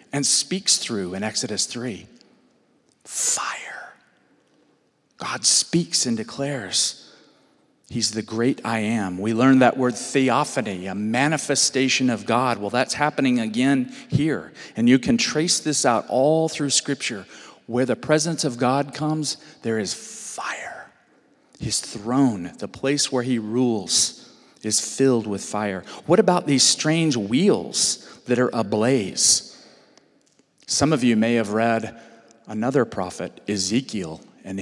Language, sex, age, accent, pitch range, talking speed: English, male, 40-59, American, 115-150 Hz, 135 wpm